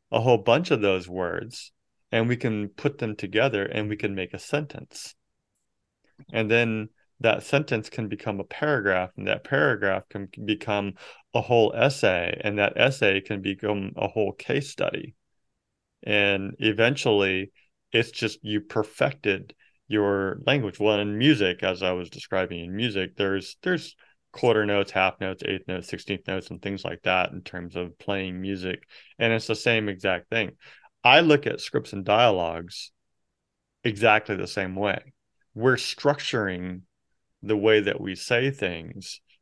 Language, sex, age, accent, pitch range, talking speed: English, male, 30-49, American, 95-110 Hz, 155 wpm